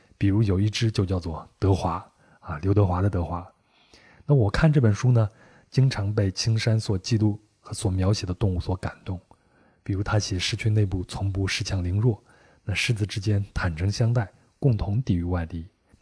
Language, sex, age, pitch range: Chinese, male, 20-39, 95-115 Hz